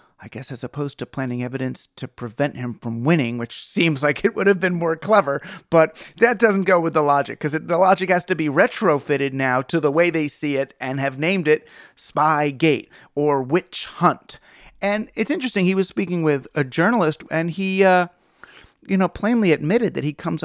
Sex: male